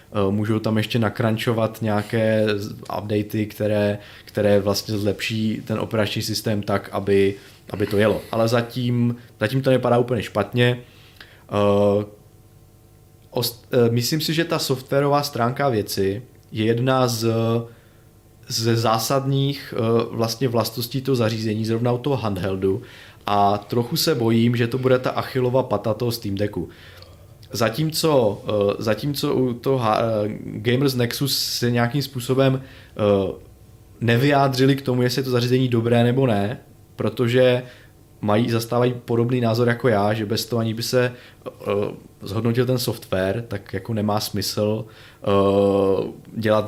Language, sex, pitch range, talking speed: Czech, male, 105-125 Hz, 125 wpm